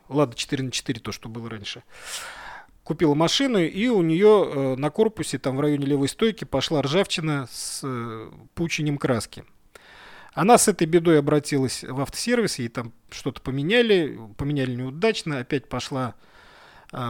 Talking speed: 150 wpm